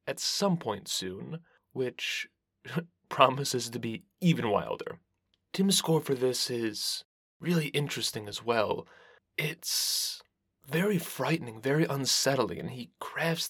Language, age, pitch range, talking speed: English, 20-39, 125-160 Hz, 120 wpm